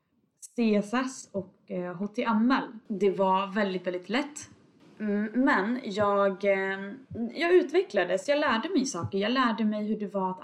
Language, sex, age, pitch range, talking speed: Swedish, female, 20-39, 190-250 Hz, 130 wpm